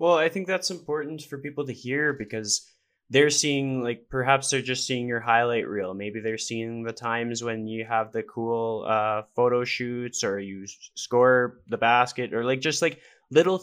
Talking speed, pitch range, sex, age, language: 190 wpm, 110-125 Hz, male, 10-29, English